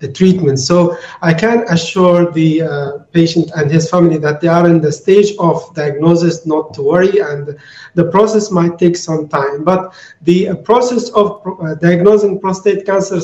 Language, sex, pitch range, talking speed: English, male, 170-205 Hz, 180 wpm